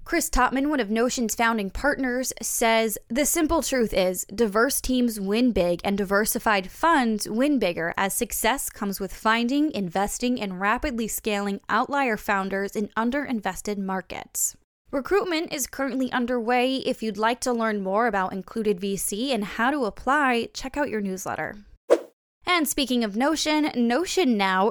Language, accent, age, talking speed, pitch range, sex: English, American, 20-39, 150 wpm, 195-265 Hz, female